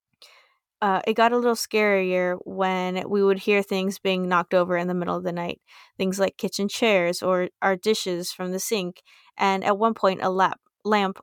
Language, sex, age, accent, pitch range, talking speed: English, female, 20-39, American, 180-205 Hz, 190 wpm